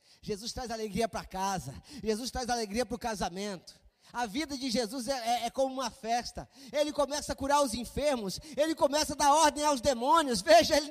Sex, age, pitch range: male, 20-39, 245-370 Hz